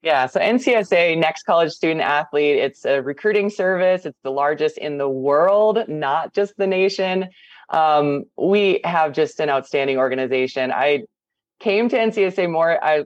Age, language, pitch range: 20-39, English, 145-190 Hz